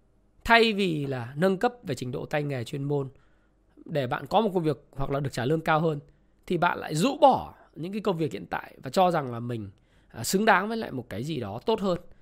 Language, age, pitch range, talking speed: Vietnamese, 20-39, 125-200 Hz, 250 wpm